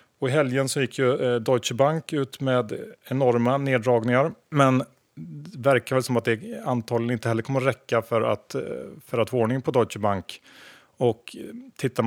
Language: Swedish